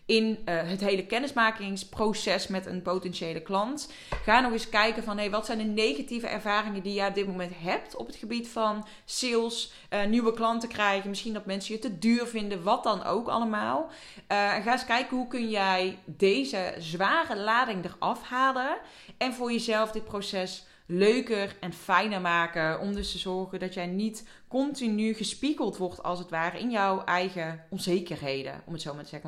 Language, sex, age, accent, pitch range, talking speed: Dutch, female, 20-39, Dutch, 180-225 Hz, 180 wpm